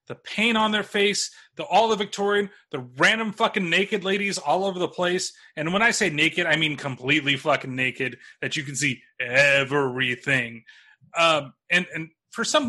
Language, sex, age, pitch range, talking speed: English, male, 30-49, 145-210 Hz, 180 wpm